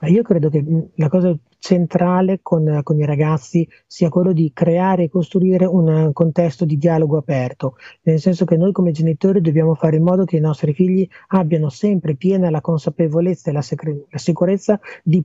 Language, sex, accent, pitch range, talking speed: Italian, male, native, 160-185 Hz, 175 wpm